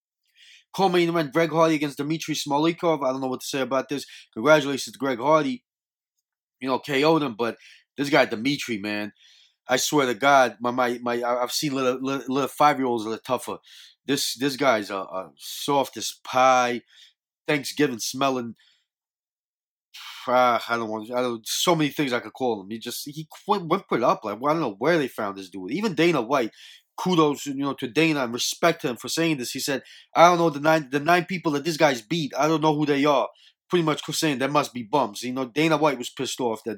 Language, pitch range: English, 125-155 Hz